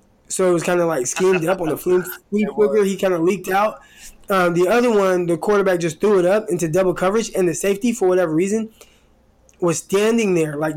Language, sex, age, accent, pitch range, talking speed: English, male, 20-39, American, 160-200 Hz, 215 wpm